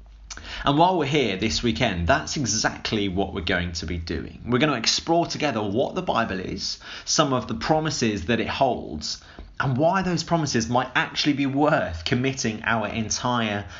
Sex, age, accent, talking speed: male, 20-39, British, 180 wpm